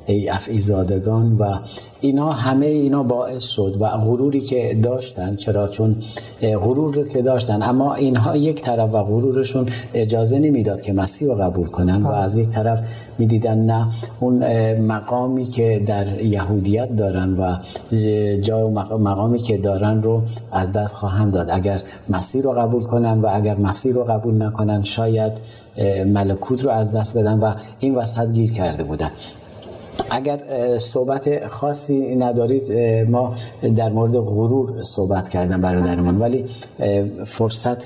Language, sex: Persian, male